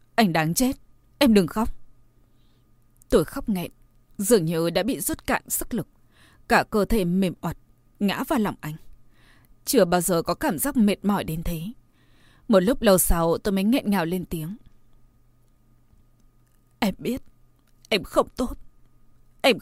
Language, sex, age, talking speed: Vietnamese, female, 20-39, 160 wpm